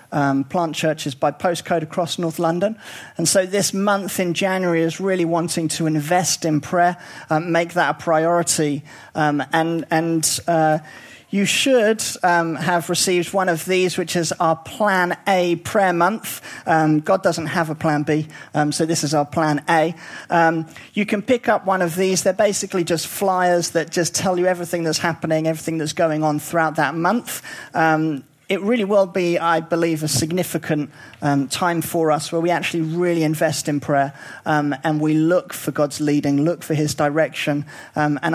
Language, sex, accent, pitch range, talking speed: English, male, British, 155-180 Hz, 185 wpm